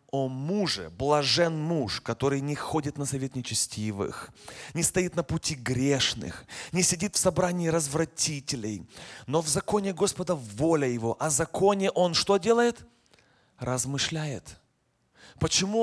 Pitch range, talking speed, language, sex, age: 140-180 Hz, 125 wpm, Russian, male, 30-49